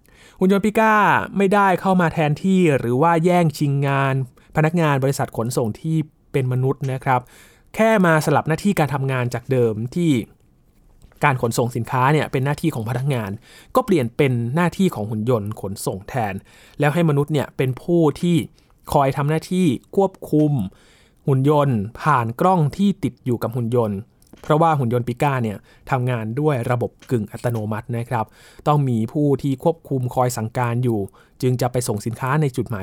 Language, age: Thai, 20-39